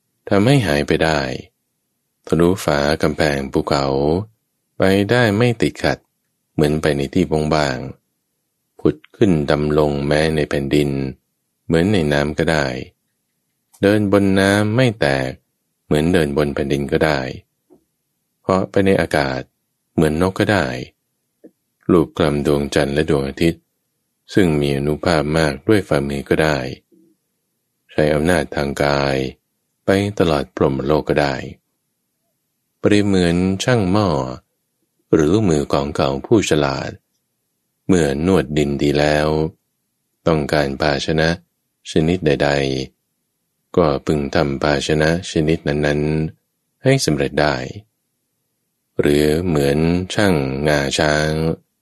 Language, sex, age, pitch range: Thai, male, 20-39, 70-90 Hz